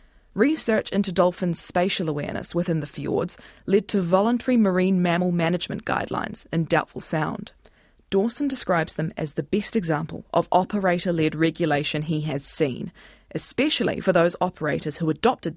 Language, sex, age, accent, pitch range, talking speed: English, female, 20-39, Australian, 165-215 Hz, 145 wpm